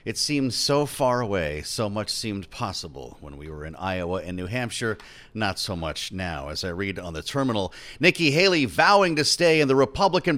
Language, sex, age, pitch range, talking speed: English, male, 40-59, 90-130 Hz, 200 wpm